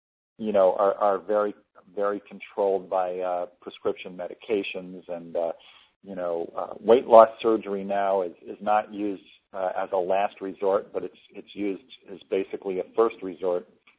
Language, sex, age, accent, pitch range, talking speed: English, male, 50-69, American, 95-115 Hz, 165 wpm